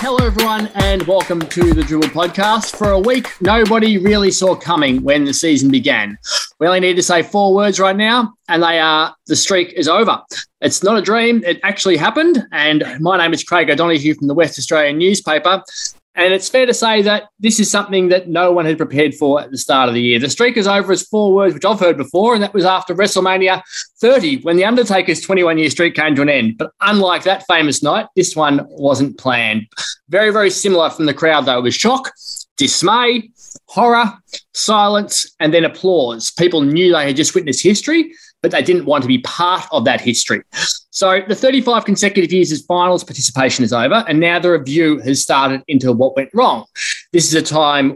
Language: English